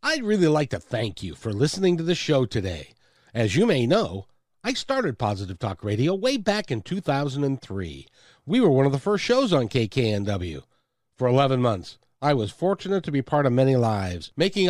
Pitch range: 115-175 Hz